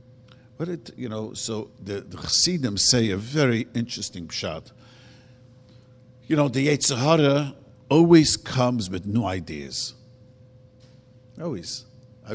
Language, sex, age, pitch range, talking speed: English, male, 50-69, 110-135 Hz, 115 wpm